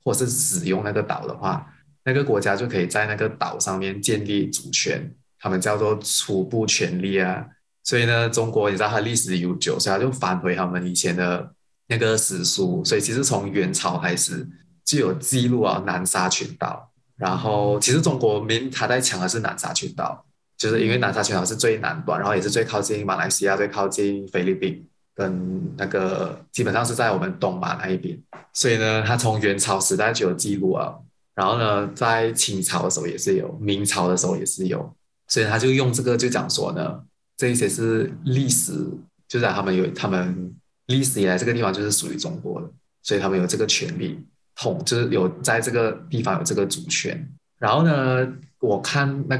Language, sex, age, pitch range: Chinese, male, 20-39, 95-130 Hz